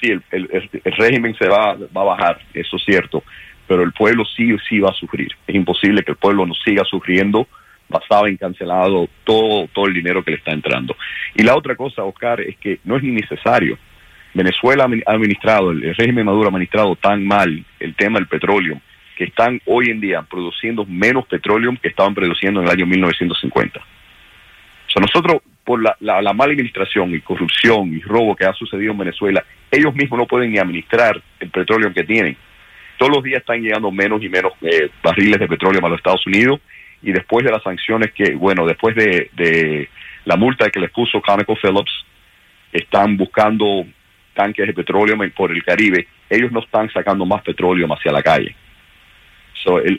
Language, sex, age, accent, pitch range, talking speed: Spanish, male, 40-59, Venezuelan, 90-115 Hz, 185 wpm